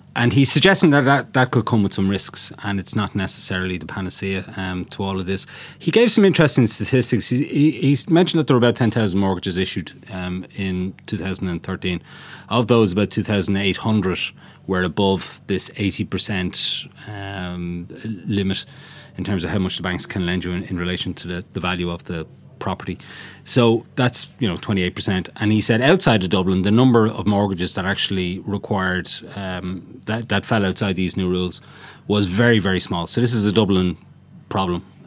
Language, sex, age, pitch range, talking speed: English, male, 30-49, 95-115 Hz, 185 wpm